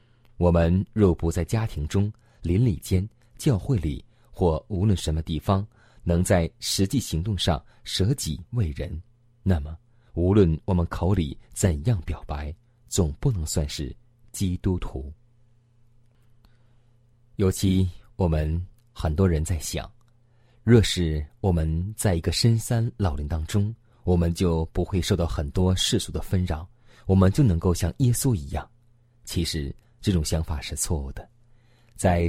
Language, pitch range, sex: Chinese, 85-115 Hz, male